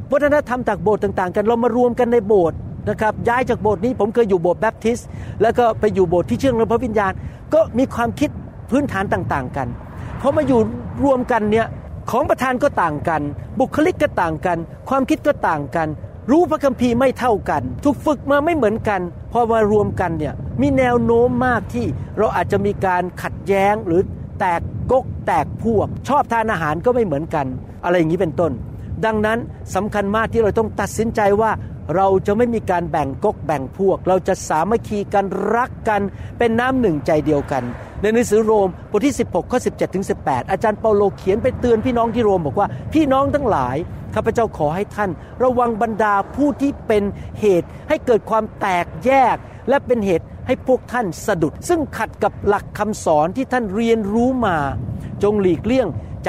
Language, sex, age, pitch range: Thai, male, 60-79, 190-245 Hz